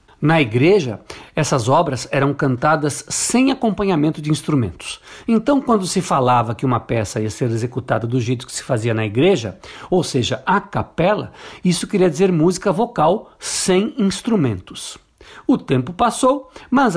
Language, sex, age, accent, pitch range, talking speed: Portuguese, male, 60-79, Brazilian, 135-210 Hz, 150 wpm